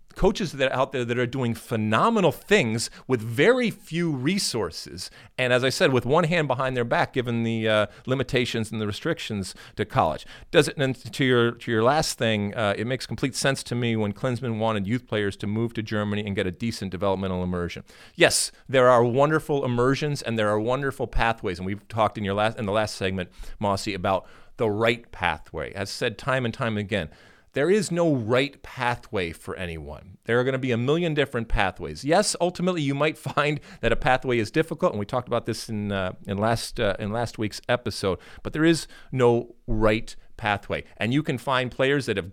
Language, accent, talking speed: English, American, 210 wpm